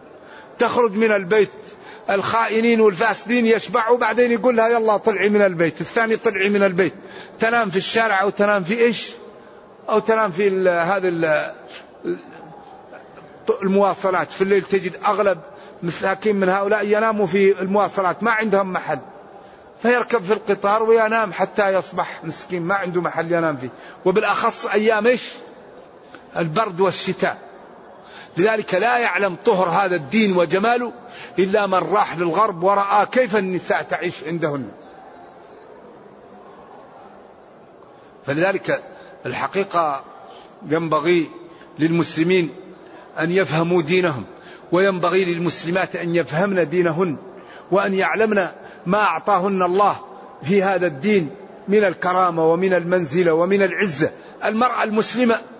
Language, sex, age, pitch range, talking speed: Arabic, male, 50-69, 180-220 Hz, 110 wpm